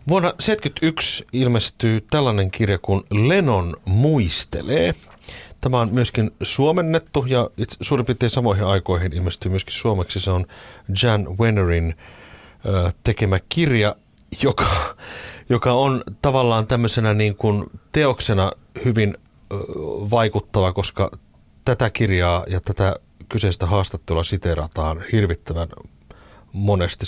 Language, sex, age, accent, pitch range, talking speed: Finnish, male, 30-49, native, 90-115 Hz, 105 wpm